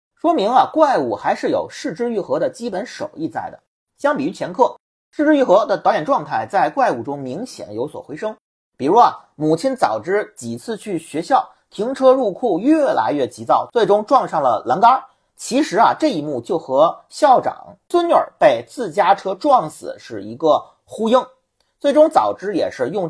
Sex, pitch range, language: male, 200-305 Hz, Chinese